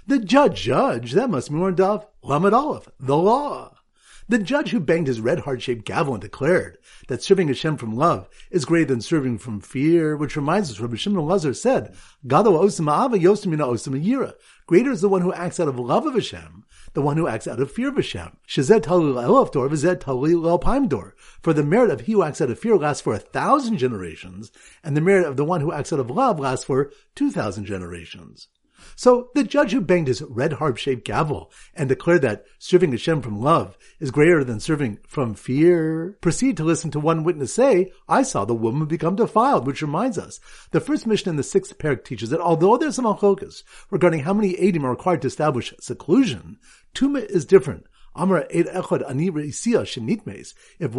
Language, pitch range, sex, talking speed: English, 135-195 Hz, male, 180 wpm